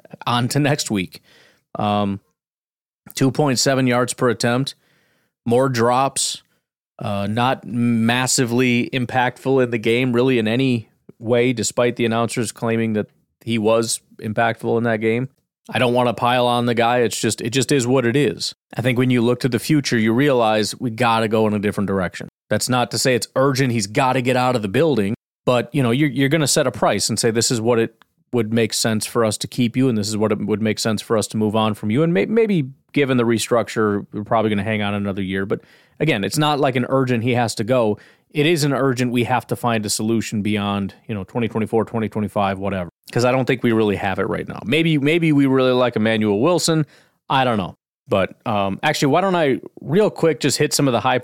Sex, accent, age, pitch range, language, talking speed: male, American, 30-49, 110-130 Hz, English, 230 wpm